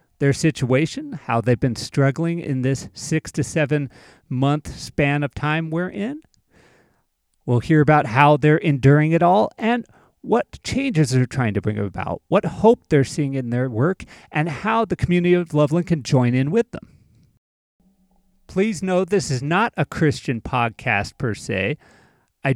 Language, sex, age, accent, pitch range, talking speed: English, male, 40-59, American, 135-185 Hz, 165 wpm